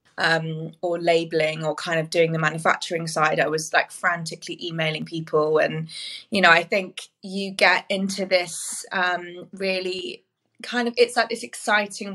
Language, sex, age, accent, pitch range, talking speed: English, female, 20-39, British, 170-195 Hz, 165 wpm